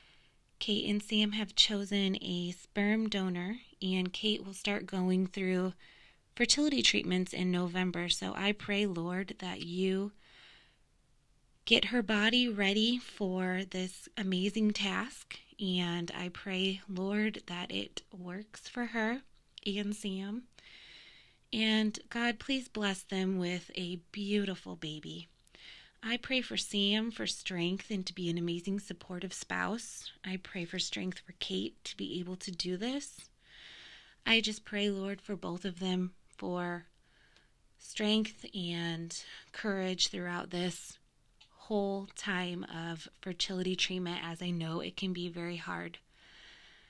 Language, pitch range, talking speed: English, 180-210 Hz, 135 wpm